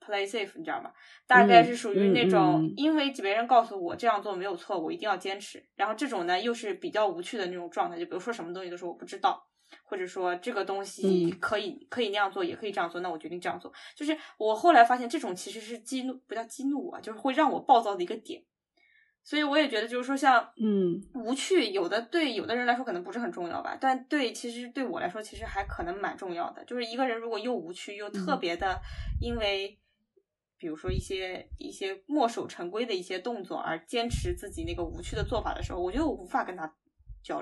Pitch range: 200-310 Hz